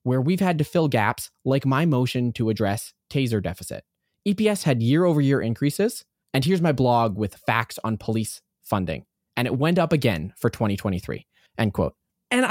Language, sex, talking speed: English, male, 175 wpm